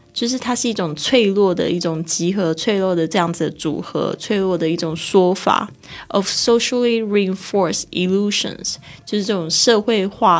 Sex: female